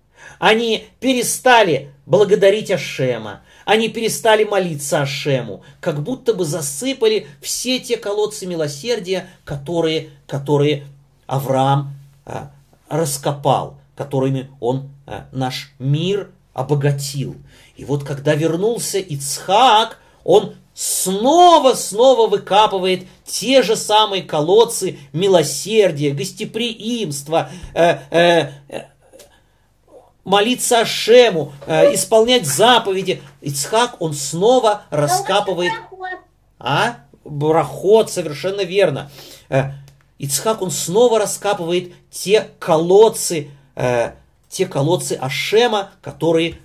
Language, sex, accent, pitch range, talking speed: Russian, male, native, 140-210 Hz, 85 wpm